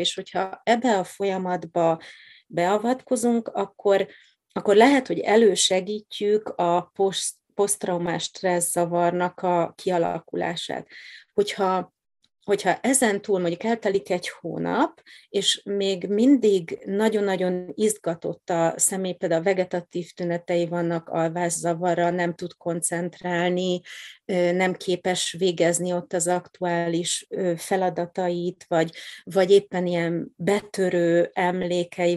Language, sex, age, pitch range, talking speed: Hungarian, female, 30-49, 175-195 Hz, 100 wpm